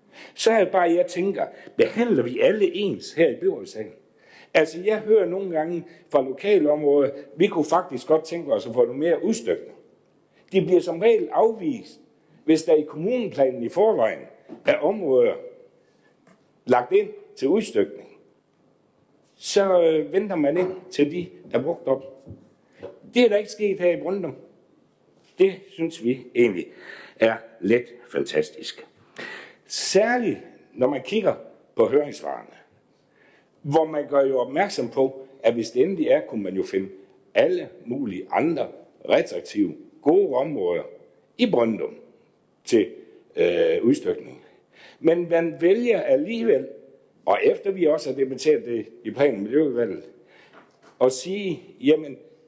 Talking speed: 140 wpm